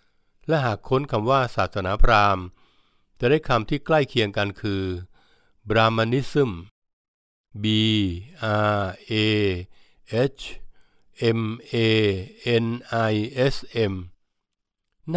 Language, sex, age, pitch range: Thai, male, 60-79, 100-125 Hz